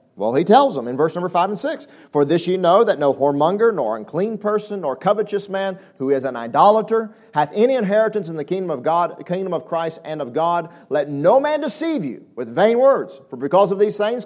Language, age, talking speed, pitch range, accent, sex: English, 40-59, 220 wpm, 185-255 Hz, American, male